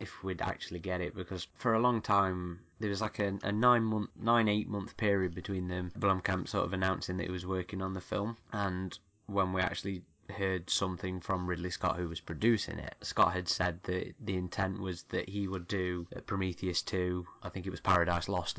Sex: male